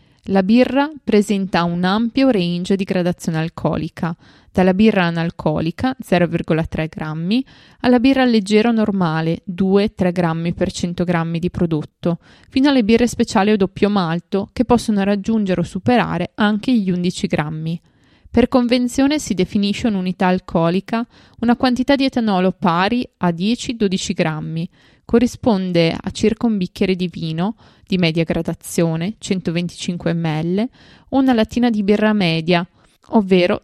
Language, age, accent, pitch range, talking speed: Italian, 20-39, native, 170-230 Hz, 130 wpm